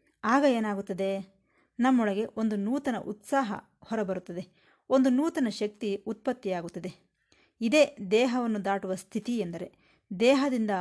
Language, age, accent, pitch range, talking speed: Kannada, 20-39, native, 195-260 Hz, 95 wpm